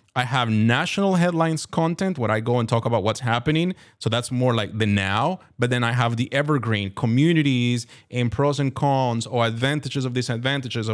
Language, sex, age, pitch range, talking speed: English, male, 30-49, 115-145 Hz, 195 wpm